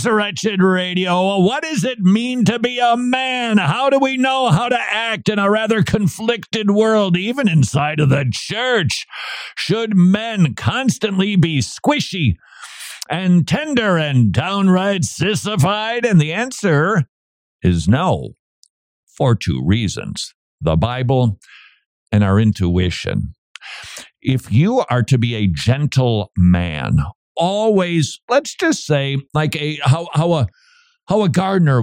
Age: 50-69